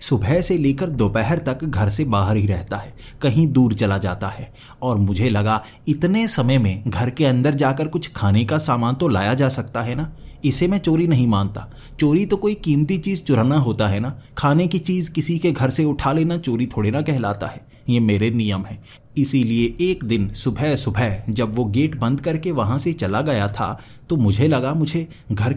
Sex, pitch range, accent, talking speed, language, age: male, 105-140 Hz, native, 205 wpm, Hindi, 30-49